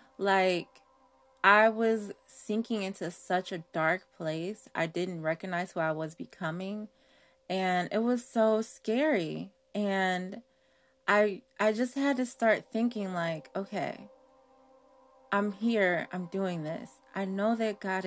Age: 20-39